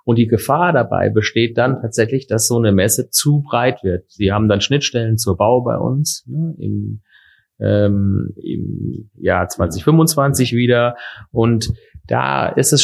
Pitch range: 110-135 Hz